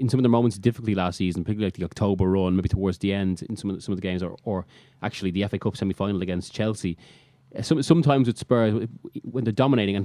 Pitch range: 100-125 Hz